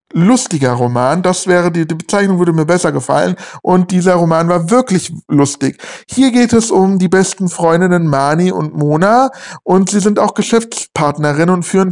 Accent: German